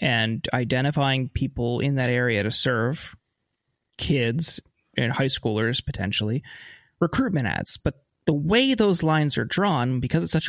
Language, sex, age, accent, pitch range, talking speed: English, male, 30-49, American, 130-165 Hz, 145 wpm